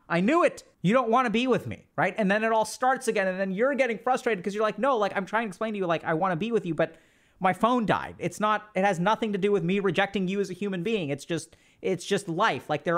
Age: 30-49